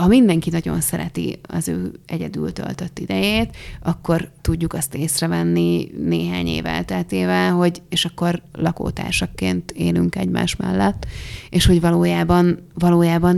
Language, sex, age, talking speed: Hungarian, female, 30-49, 115 wpm